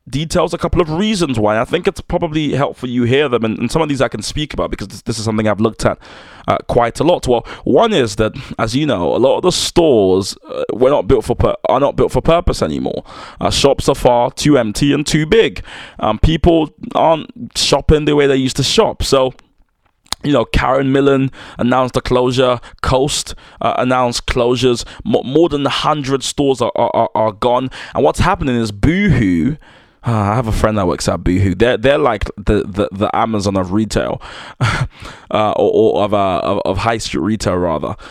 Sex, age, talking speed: male, 20-39, 210 wpm